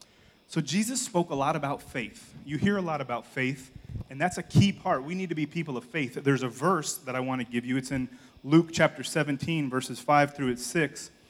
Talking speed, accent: 230 wpm, American